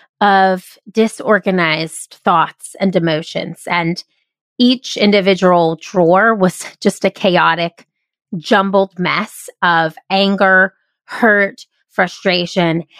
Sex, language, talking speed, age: female, English, 90 wpm, 30-49